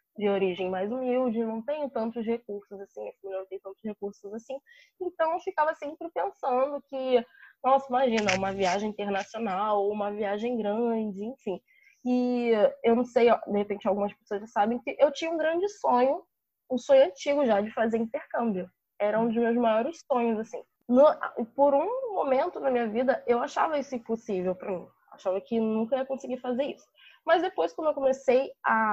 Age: 10-29